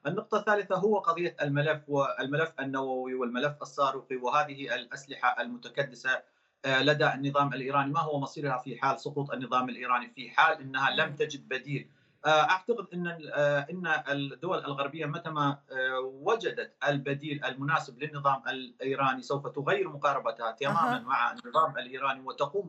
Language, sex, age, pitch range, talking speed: Arabic, male, 40-59, 135-160 Hz, 130 wpm